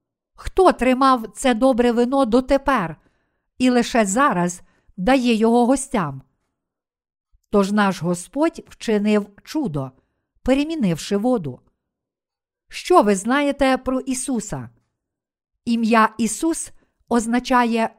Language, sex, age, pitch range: Ukrainian, female, 50-69, 205-260 Hz